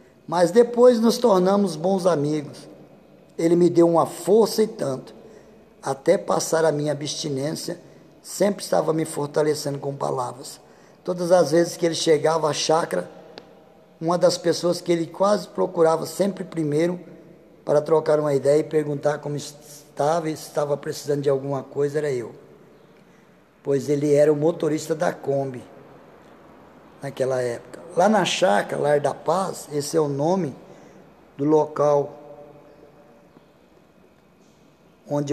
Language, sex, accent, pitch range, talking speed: Portuguese, male, Brazilian, 145-175 Hz, 135 wpm